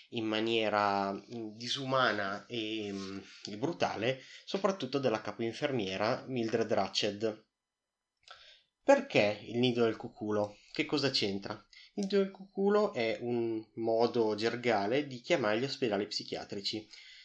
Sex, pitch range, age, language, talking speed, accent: male, 105-130 Hz, 30-49, Italian, 110 wpm, native